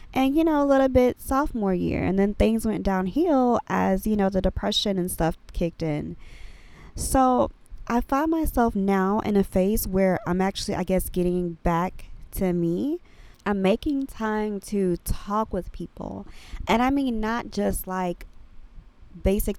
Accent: American